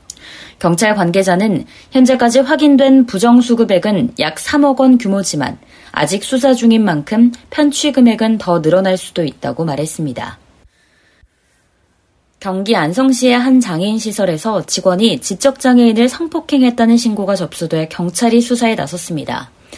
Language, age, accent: Korean, 20-39, native